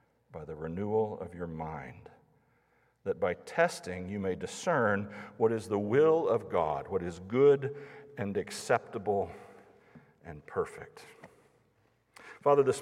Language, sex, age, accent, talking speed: English, male, 50-69, American, 125 wpm